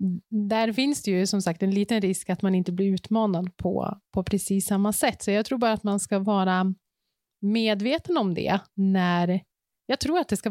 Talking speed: 205 wpm